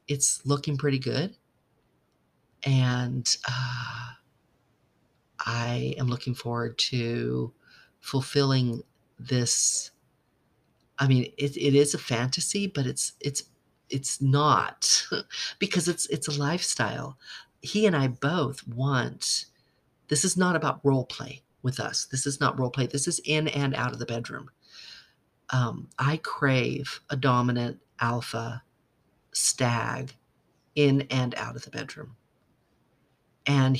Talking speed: 125 wpm